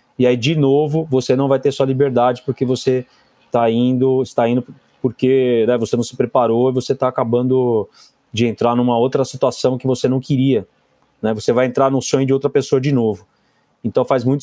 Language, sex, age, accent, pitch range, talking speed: Portuguese, male, 20-39, Brazilian, 120-145 Hz, 205 wpm